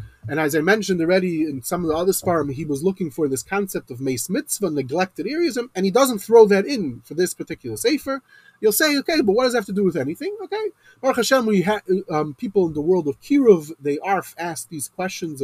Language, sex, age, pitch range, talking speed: English, male, 30-49, 135-210 Hz, 240 wpm